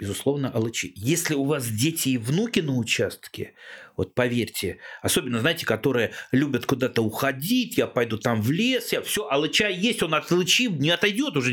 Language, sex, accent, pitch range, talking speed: Russian, male, native, 115-170 Hz, 170 wpm